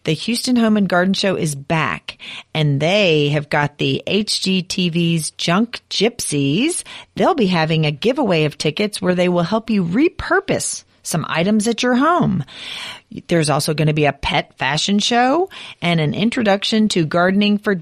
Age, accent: 40-59, American